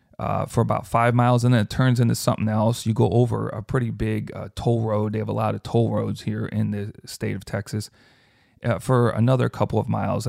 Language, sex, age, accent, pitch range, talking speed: English, male, 40-59, American, 110-130 Hz, 235 wpm